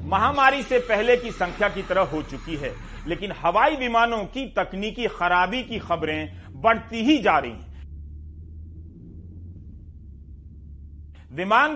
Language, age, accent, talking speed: Hindi, 40-59, native, 120 wpm